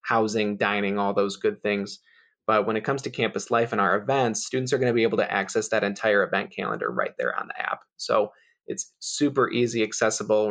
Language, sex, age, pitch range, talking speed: English, male, 20-39, 105-130 Hz, 215 wpm